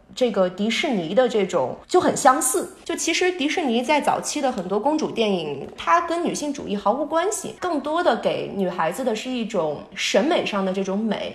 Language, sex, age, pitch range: Chinese, female, 20-39, 210-305 Hz